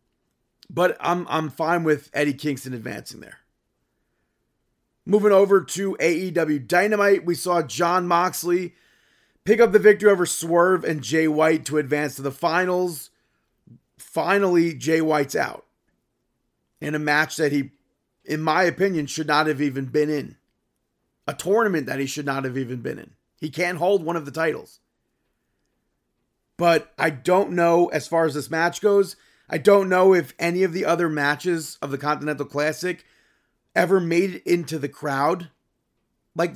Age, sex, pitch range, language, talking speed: 30-49, male, 150-185 Hz, English, 160 wpm